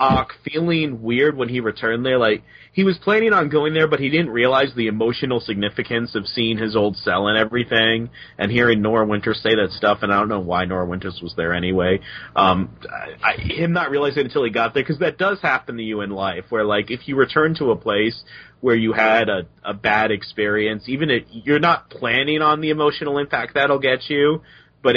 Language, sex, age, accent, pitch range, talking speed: English, male, 30-49, American, 105-130 Hz, 220 wpm